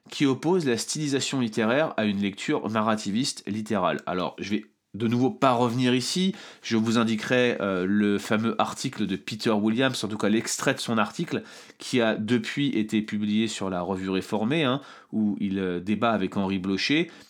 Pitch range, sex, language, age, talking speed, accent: 105-130 Hz, male, French, 30-49, 180 wpm, French